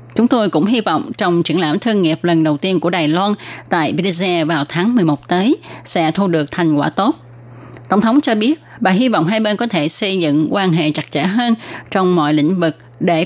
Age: 20-39